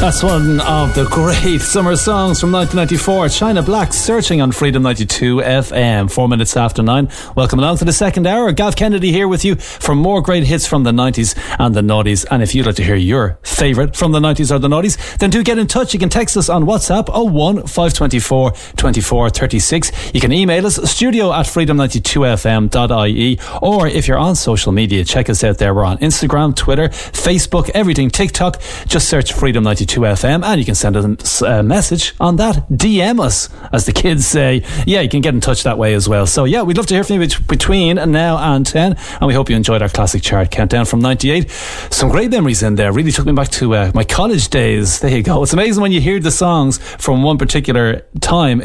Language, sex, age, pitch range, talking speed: English, male, 30-49, 120-180 Hz, 215 wpm